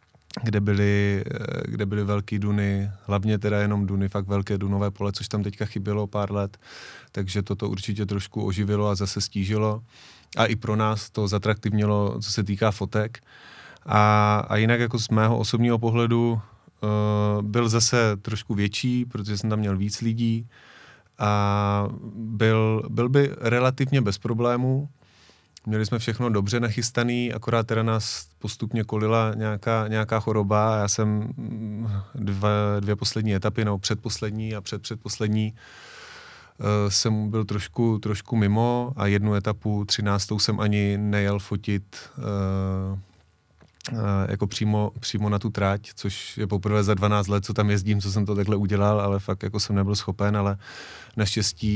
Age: 30-49